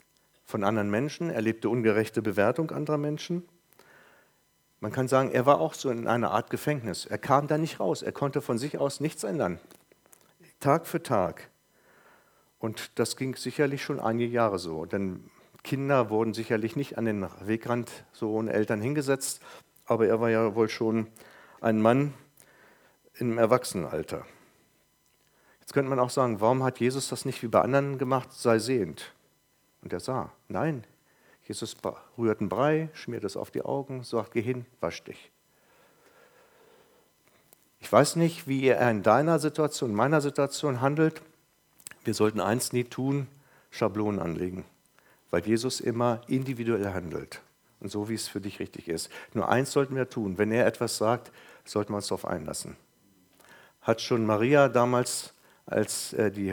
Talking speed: 160 wpm